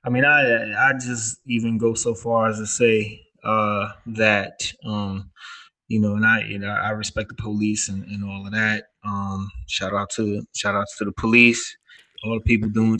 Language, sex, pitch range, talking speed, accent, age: English, male, 105-115 Hz, 200 wpm, American, 20-39